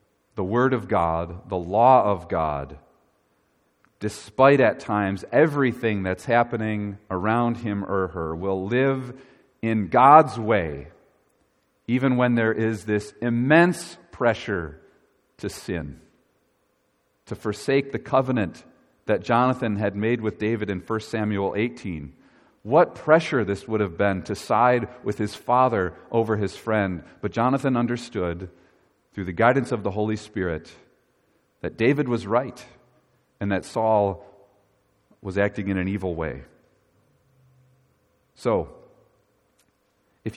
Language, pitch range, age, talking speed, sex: English, 100-120 Hz, 40-59, 125 wpm, male